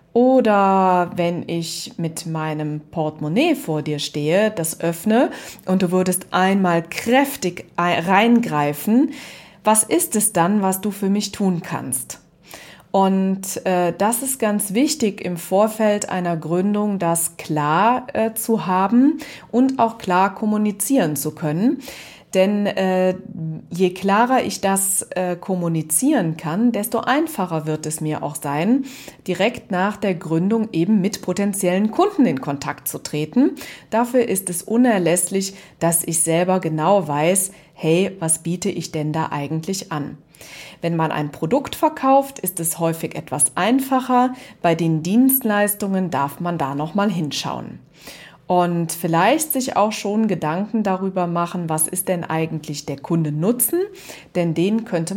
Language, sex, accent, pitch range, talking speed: German, female, German, 165-215 Hz, 140 wpm